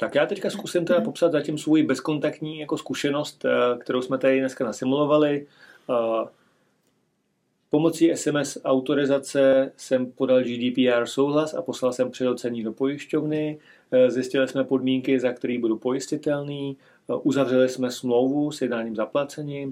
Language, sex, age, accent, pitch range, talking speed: Czech, male, 40-59, native, 120-145 Hz, 130 wpm